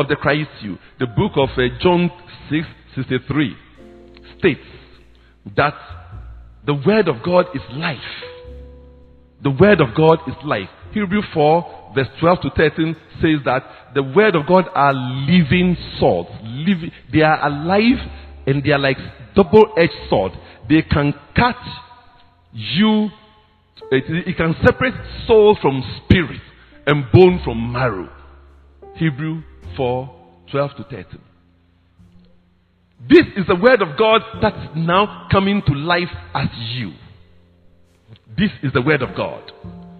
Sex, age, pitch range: male, 50-69, 115-195 Hz